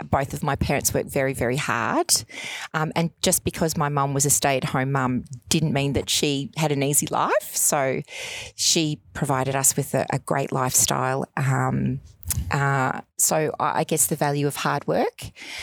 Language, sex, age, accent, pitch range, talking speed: English, female, 30-49, Australian, 140-170 Hz, 185 wpm